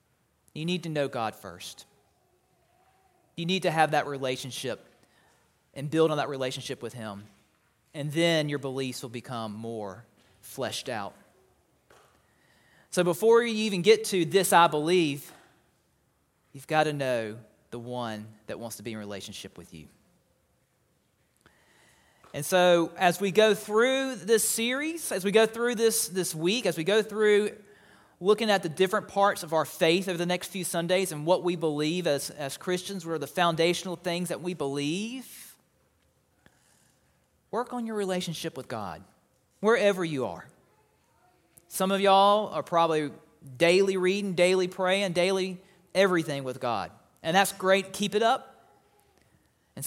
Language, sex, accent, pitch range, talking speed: English, male, American, 145-200 Hz, 155 wpm